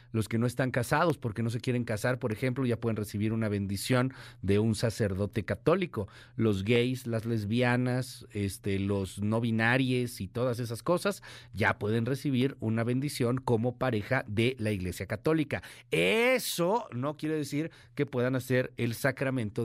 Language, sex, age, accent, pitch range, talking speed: Spanish, male, 50-69, Mexican, 115-150 Hz, 160 wpm